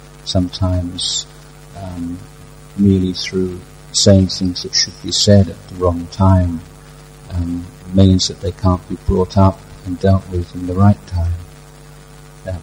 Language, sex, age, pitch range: Thai, male, 50-69, 85-95 Hz